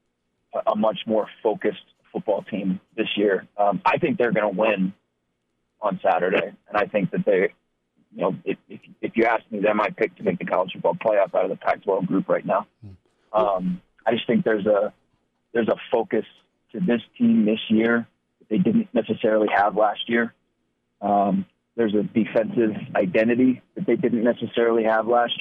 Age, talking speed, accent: 30-49, 180 wpm, American